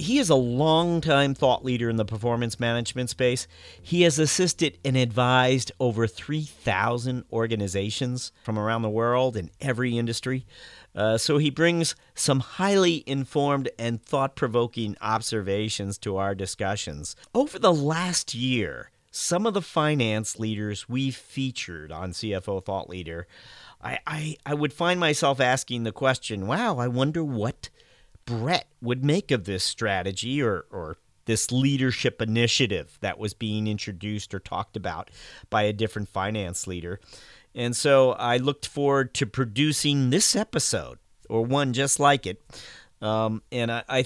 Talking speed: 145 wpm